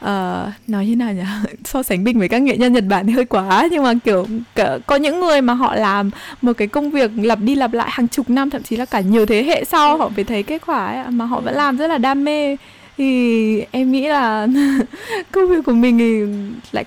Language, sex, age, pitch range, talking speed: Vietnamese, female, 20-39, 205-265 Hz, 245 wpm